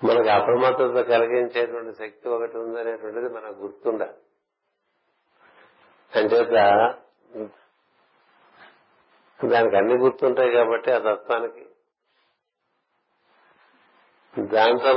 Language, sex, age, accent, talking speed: Telugu, male, 50-69, native, 65 wpm